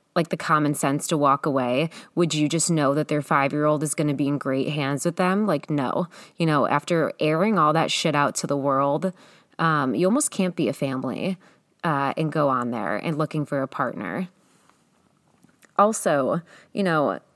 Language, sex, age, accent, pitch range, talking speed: English, female, 20-39, American, 145-180 Hz, 195 wpm